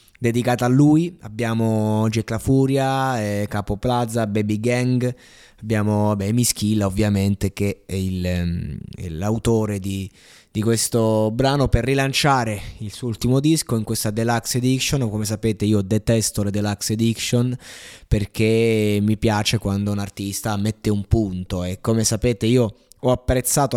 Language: Italian